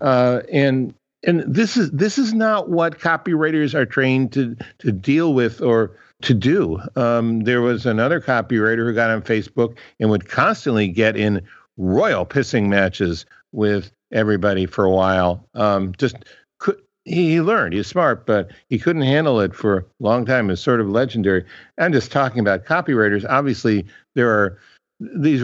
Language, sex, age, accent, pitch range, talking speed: English, male, 60-79, American, 105-140 Hz, 165 wpm